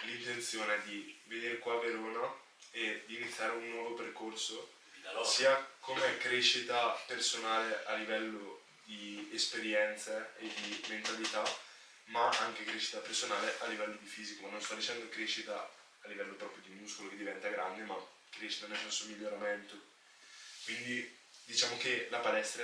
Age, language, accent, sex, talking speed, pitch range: 20-39, Italian, native, male, 145 wpm, 105-115 Hz